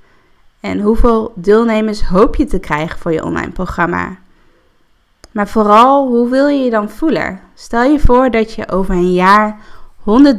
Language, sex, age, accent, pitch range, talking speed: Dutch, female, 20-39, Dutch, 180-220 Hz, 160 wpm